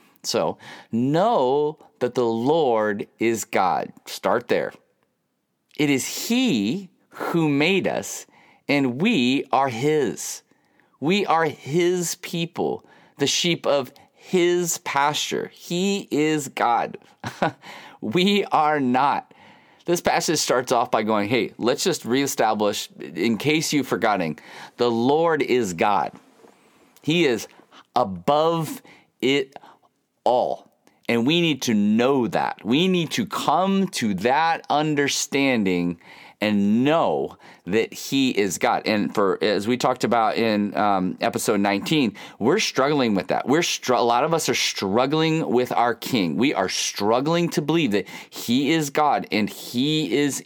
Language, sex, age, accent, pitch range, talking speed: English, male, 30-49, American, 120-170 Hz, 135 wpm